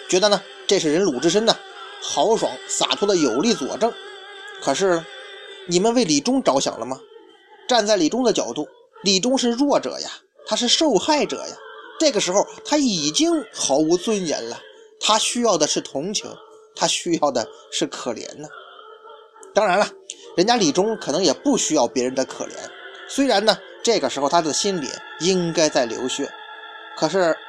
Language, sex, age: Chinese, male, 20-39